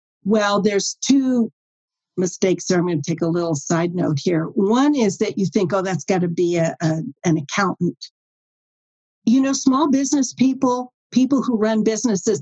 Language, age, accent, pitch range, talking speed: English, 50-69, American, 180-235 Hz, 180 wpm